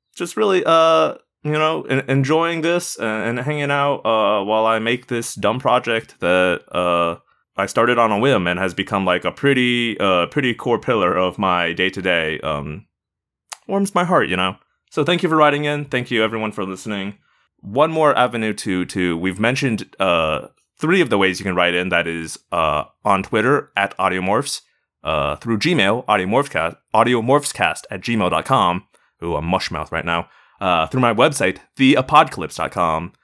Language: English